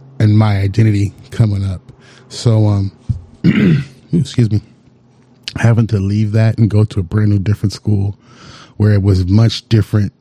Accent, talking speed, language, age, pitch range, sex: American, 155 wpm, English, 30-49, 100-120 Hz, male